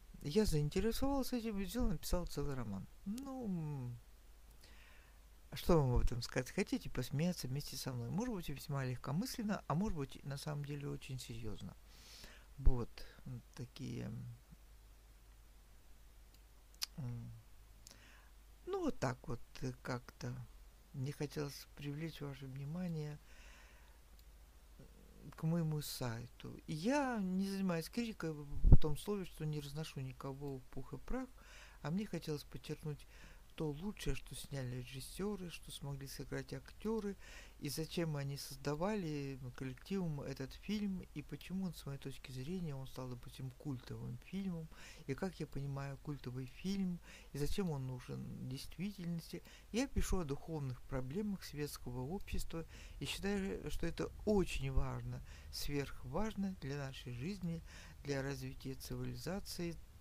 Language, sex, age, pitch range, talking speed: Russian, male, 50-69, 125-175 Hz, 125 wpm